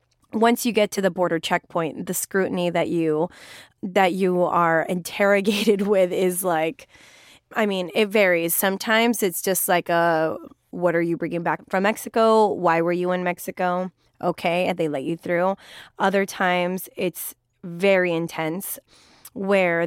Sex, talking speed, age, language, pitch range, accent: female, 155 wpm, 20-39, English, 170-205 Hz, American